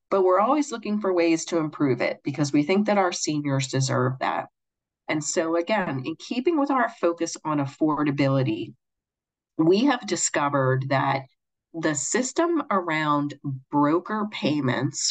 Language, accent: English, American